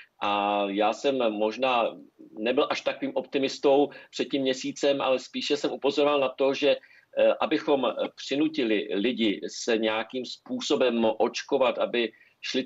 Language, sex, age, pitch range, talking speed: Czech, male, 50-69, 115-140 Hz, 130 wpm